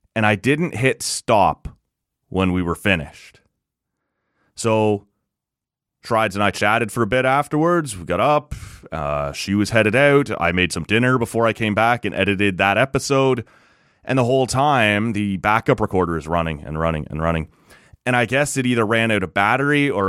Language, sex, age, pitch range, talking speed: English, male, 30-49, 95-125 Hz, 180 wpm